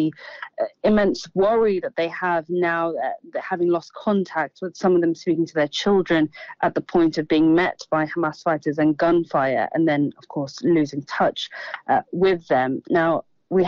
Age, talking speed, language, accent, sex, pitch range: 30-49, 180 wpm, English, British, female, 155-185 Hz